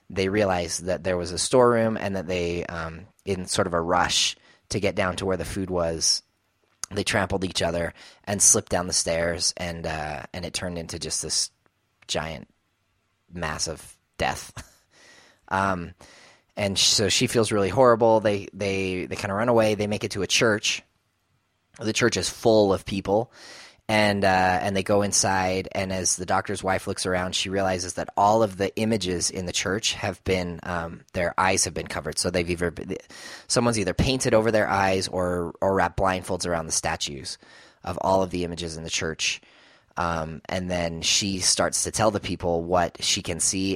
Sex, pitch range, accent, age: male, 85-100 Hz, American, 30-49